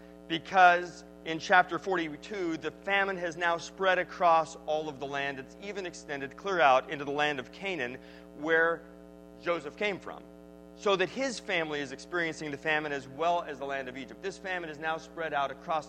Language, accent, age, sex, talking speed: English, American, 30-49, male, 190 wpm